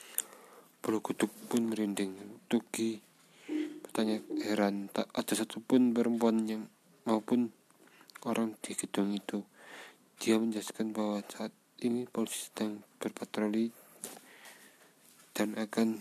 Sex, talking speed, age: male, 95 wpm, 20-39